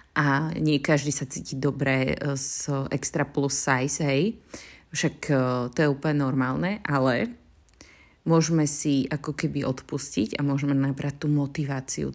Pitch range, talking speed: 135-155 Hz, 140 wpm